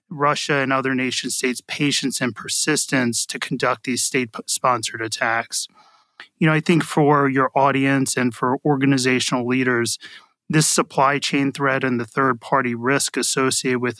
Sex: male